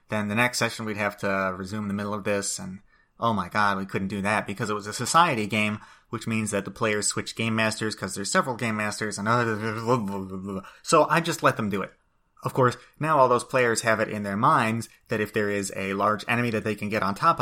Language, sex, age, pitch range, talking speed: English, male, 30-49, 105-130 Hz, 250 wpm